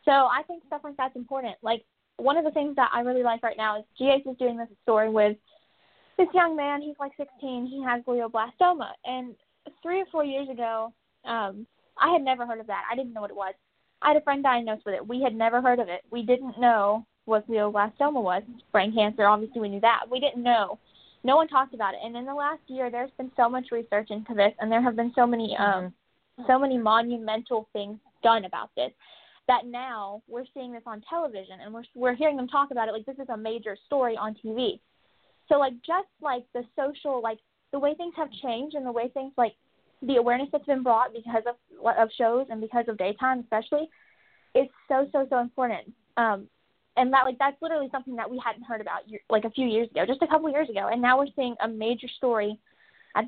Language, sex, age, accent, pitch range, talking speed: English, female, 10-29, American, 225-275 Hz, 225 wpm